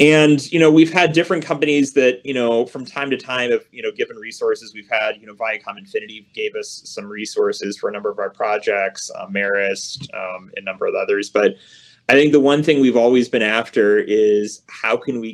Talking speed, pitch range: 220 wpm, 110-165 Hz